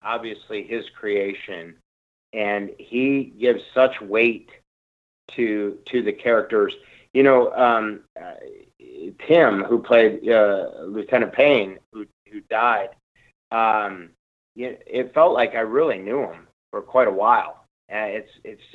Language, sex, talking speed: English, male, 135 wpm